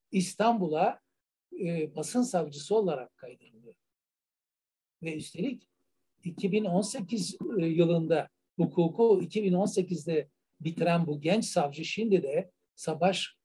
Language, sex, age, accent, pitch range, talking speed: Turkish, male, 60-79, native, 155-195 Hz, 85 wpm